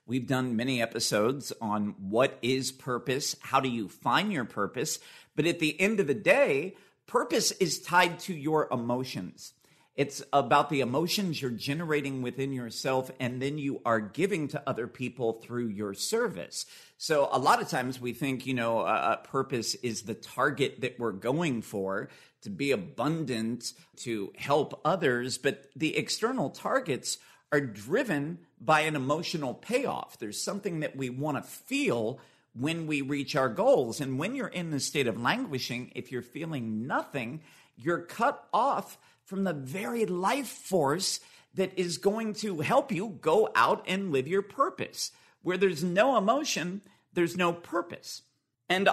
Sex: male